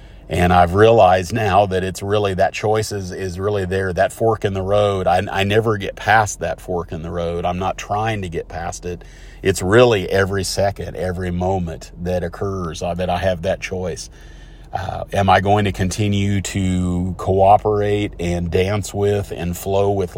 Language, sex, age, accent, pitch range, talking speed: English, male, 40-59, American, 90-100 Hz, 185 wpm